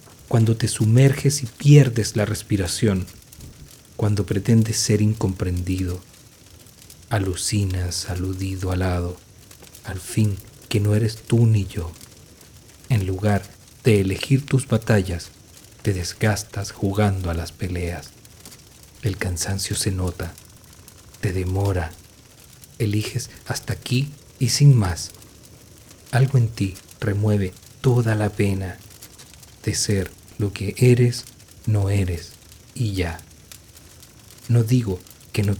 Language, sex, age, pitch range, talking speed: Spanish, male, 40-59, 95-115 Hz, 115 wpm